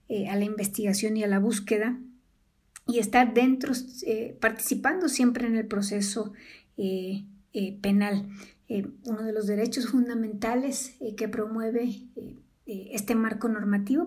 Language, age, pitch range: Spanish, 50-69, 220-250 Hz